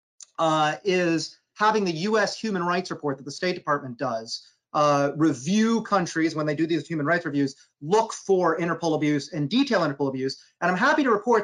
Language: English